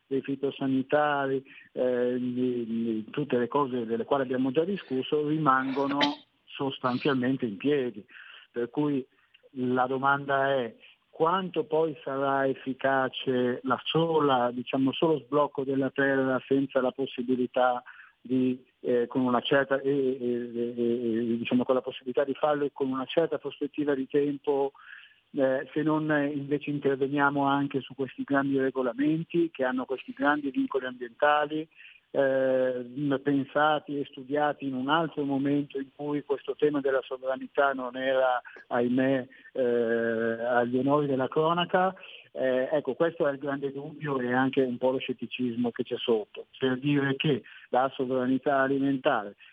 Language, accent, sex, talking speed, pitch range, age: Italian, native, male, 125 wpm, 125-145 Hz, 50-69